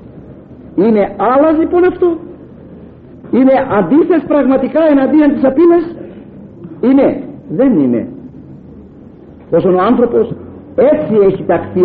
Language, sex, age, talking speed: Greek, male, 50-69, 95 wpm